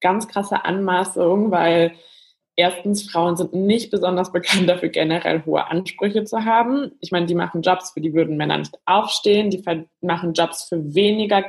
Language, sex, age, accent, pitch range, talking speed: German, female, 20-39, German, 170-195 Hz, 165 wpm